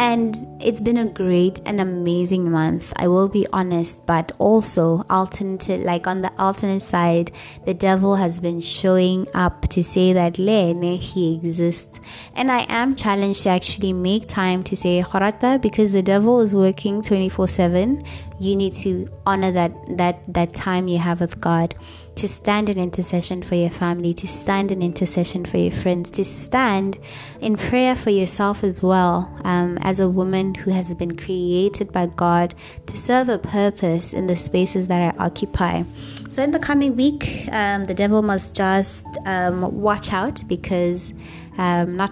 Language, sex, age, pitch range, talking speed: English, female, 20-39, 175-200 Hz, 170 wpm